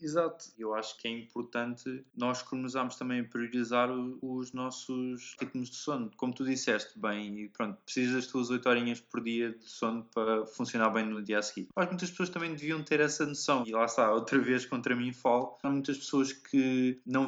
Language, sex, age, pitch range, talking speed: Portuguese, male, 20-39, 115-135 Hz, 205 wpm